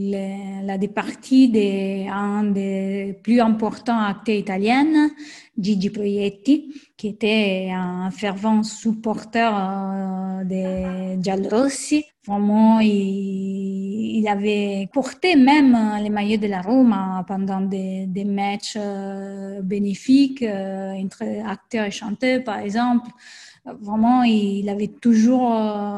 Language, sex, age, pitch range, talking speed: French, female, 20-39, 195-230 Hz, 110 wpm